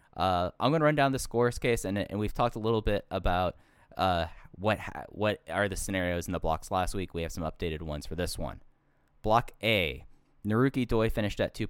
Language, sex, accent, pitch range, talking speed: English, male, American, 85-110 Hz, 225 wpm